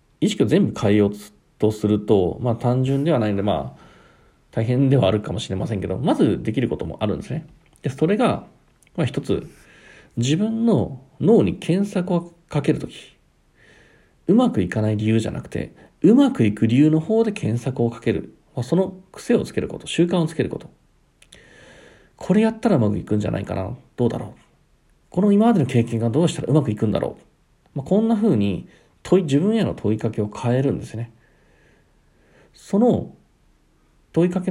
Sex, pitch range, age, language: male, 110-170 Hz, 40-59, Japanese